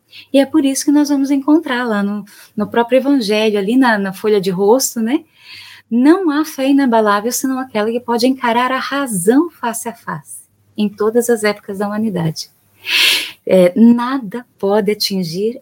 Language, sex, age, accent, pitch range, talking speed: Portuguese, female, 20-39, Brazilian, 175-255 Hz, 170 wpm